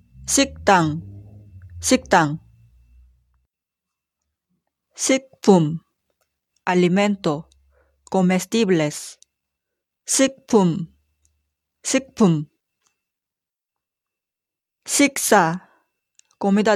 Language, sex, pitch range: Korean, female, 165-250 Hz